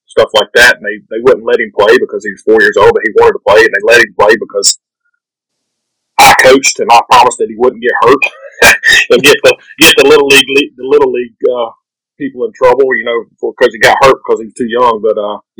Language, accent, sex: English, American, male